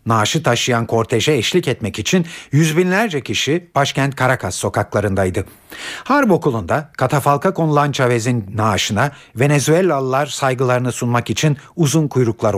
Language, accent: Turkish, native